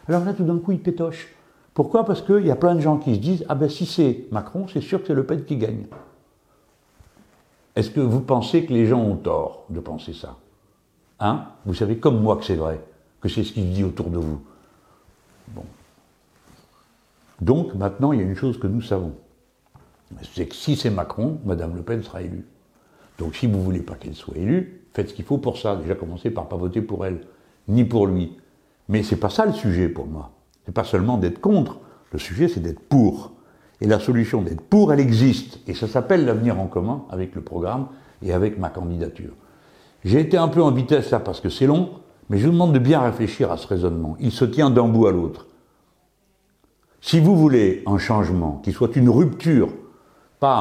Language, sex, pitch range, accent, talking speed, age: French, male, 95-140 Hz, French, 220 wpm, 60-79